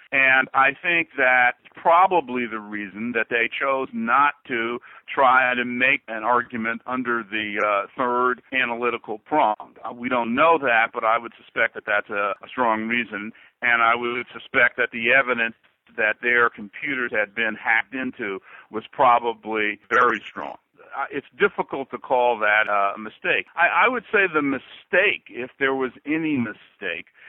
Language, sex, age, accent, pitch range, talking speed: English, male, 60-79, American, 115-140 Hz, 160 wpm